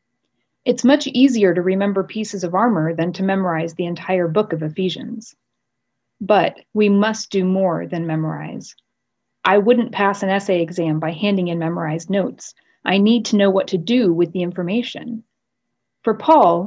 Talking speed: 165 wpm